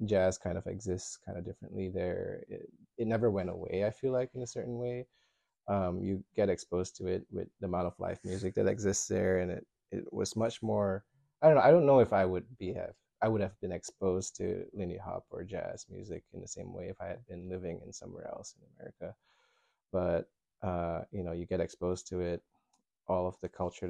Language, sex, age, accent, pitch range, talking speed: English, male, 20-39, American, 90-115 Hz, 225 wpm